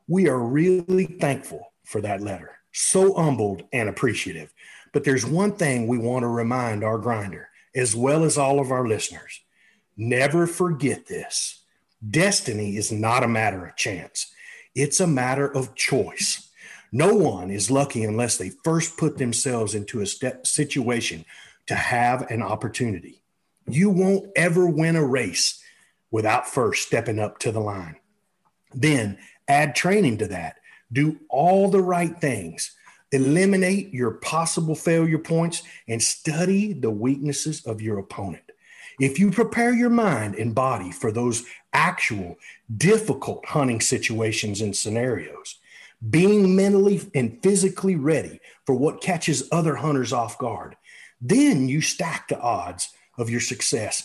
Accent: American